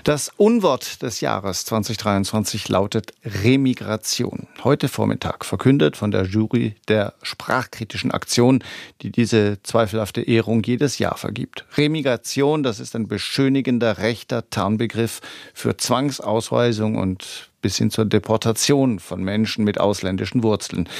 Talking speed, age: 120 wpm, 50-69